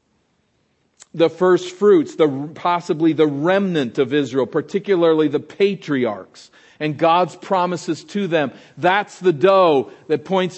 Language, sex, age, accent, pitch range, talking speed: English, male, 50-69, American, 130-175 Hz, 125 wpm